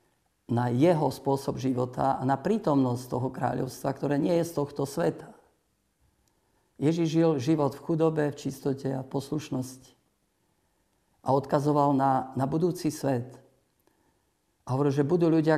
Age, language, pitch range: 50-69, Slovak, 130-145 Hz